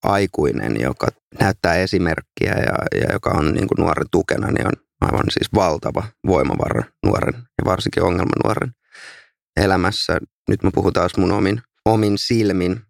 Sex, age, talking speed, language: male, 30-49, 150 wpm, Finnish